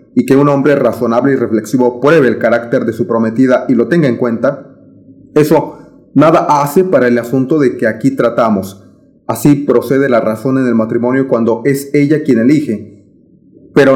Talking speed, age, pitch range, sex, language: 175 wpm, 30-49, 125-145 Hz, male, Spanish